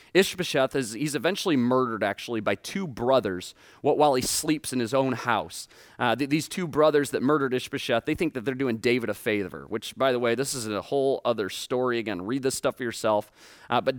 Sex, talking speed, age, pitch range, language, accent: male, 205 wpm, 30-49, 125-180 Hz, English, American